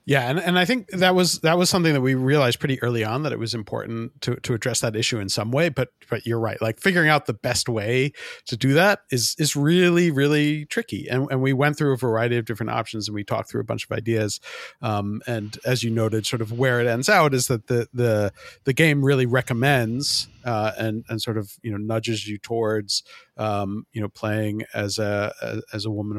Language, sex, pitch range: English, male, 105-135 Hz